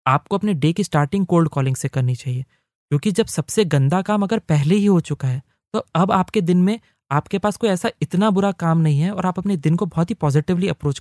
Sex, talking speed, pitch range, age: male, 240 wpm, 140-185 Hz, 20-39